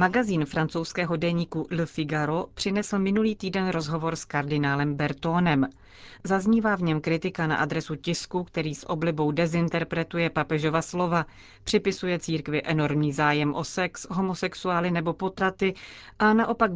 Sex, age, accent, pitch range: female, 30-49, native, 150-180 Hz